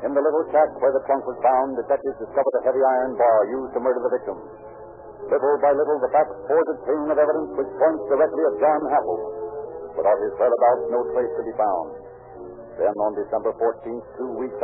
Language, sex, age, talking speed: English, male, 60-79, 205 wpm